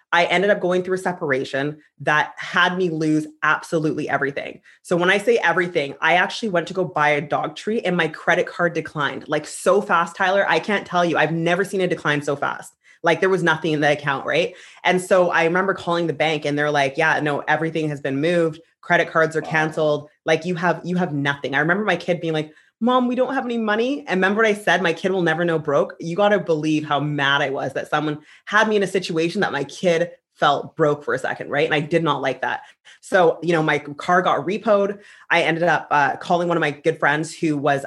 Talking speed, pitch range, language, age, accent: 240 wpm, 150-180 Hz, English, 20-39, American